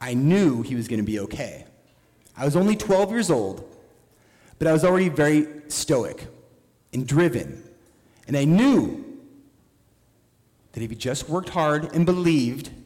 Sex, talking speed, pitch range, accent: male, 155 wpm, 115-160 Hz, American